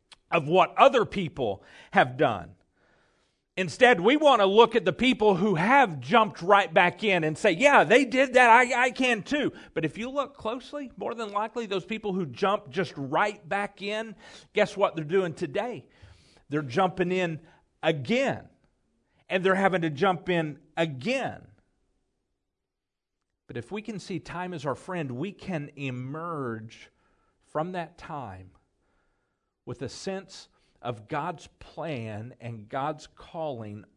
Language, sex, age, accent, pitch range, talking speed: English, male, 50-69, American, 125-190 Hz, 150 wpm